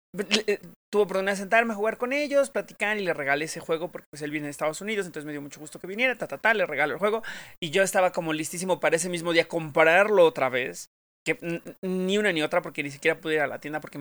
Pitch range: 160-205 Hz